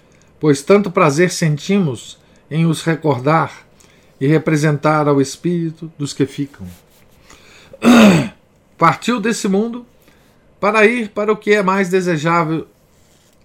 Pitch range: 150-180 Hz